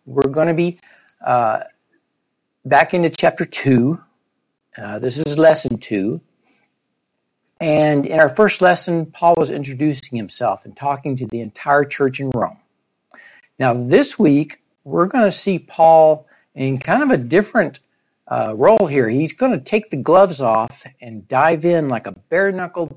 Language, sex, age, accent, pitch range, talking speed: English, male, 60-79, American, 130-180 Hz, 155 wpm